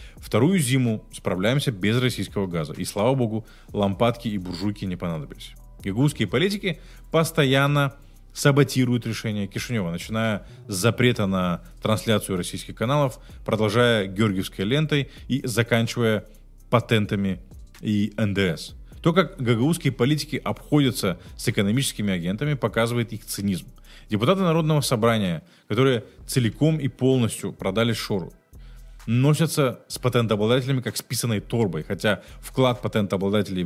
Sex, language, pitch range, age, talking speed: male, Russian, 105-135 Hz, 20-39, 115 wpm